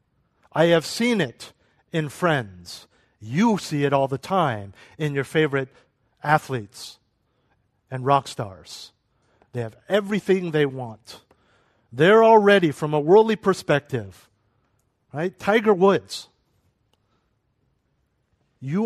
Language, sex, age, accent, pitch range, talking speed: English, male, 50-69, American, 120-170 Hz, 110 wpm